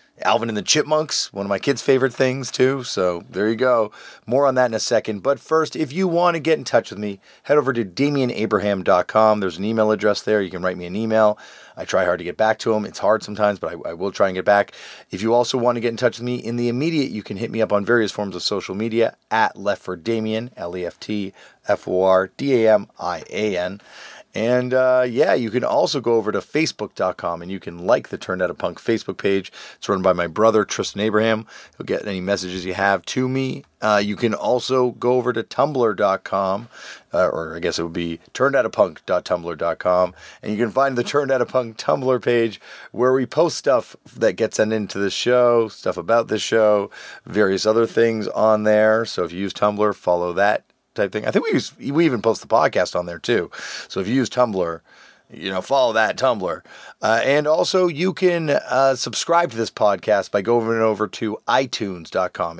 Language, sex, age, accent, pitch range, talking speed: English, male, 40-59, American, 100-125 Hz, 215 wpm